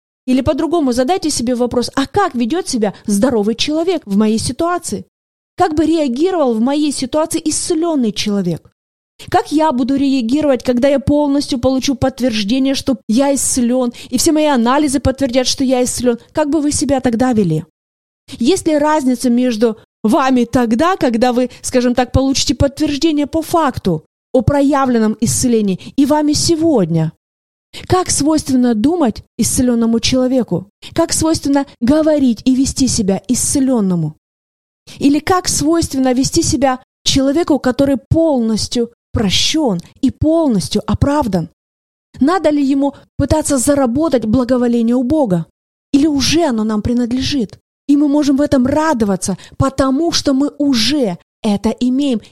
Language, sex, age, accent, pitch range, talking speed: Russian, female, 20-39, native, 240-295 Hz, 135 wpm